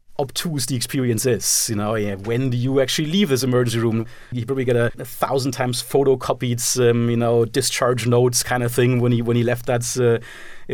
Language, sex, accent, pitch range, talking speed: English, male, German, 115-130 Hz, 210 wpm